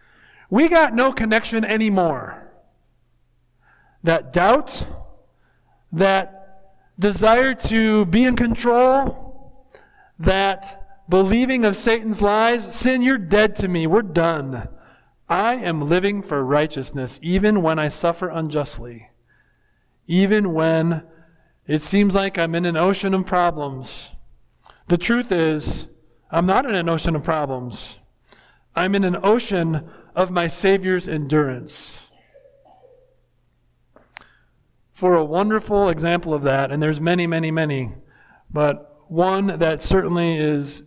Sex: male